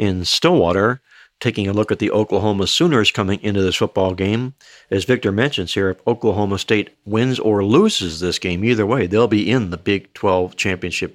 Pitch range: 95-115 Hz